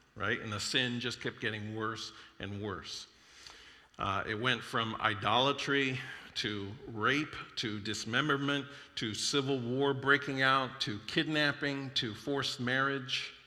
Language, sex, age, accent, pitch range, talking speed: English, male, 50-69, American, 105-130 Hz, 130 wpm